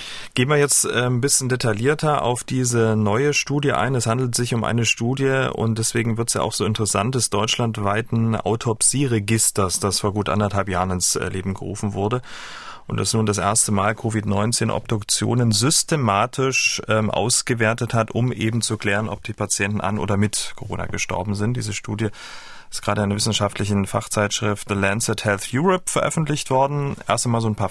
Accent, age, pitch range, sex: German, 30-49, 105-130 Hz, male